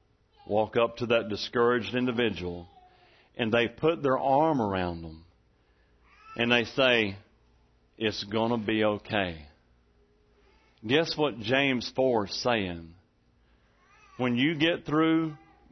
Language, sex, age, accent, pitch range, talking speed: English, male, 40-59, American, 105-155 Hz, 120 wpm